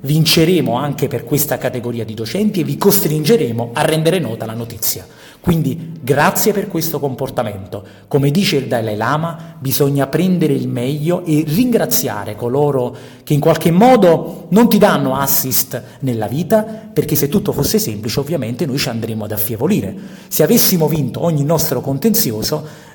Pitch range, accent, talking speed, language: 120-165 Hz, native, 155 wpm, Italian